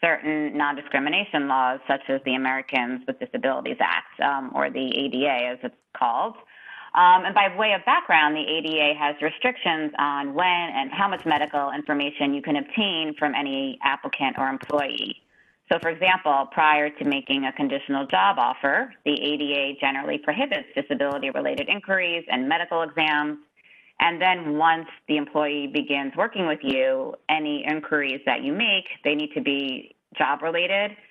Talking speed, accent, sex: 155 wpm, American, female